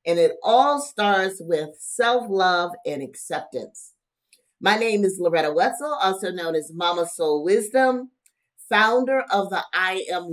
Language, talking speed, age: English, 140 wpm, 50-69